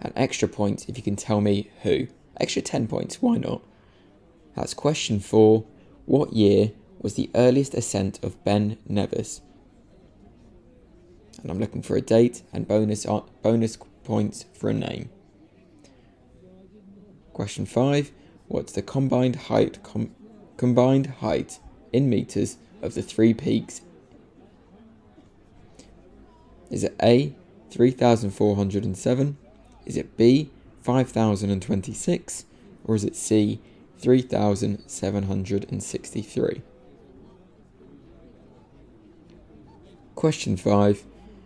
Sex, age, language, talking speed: male, 20-39, English, 100 wpm